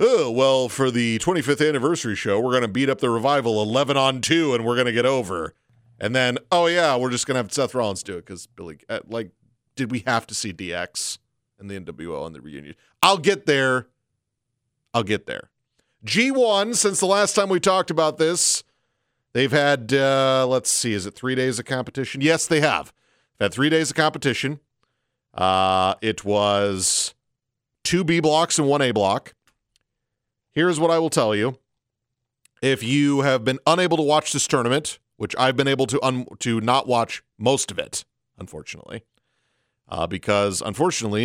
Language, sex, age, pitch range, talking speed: English, male, 40-59, 115-145 Hz, 185 wpm